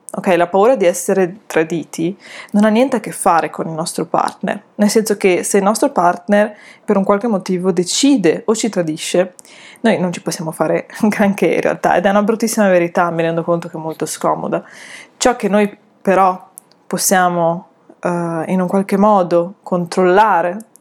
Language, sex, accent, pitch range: Italian, female, native, 175-205 Hz